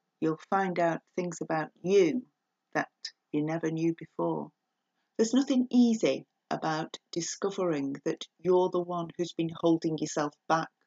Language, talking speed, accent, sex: English, 140 wpm, British, female